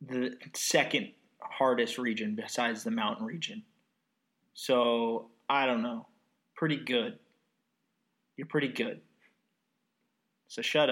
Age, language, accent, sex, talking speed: 20-39, English, American, male, 105 wpm